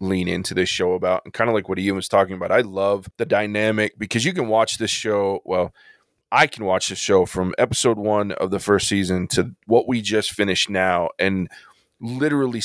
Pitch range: 100-125 Hz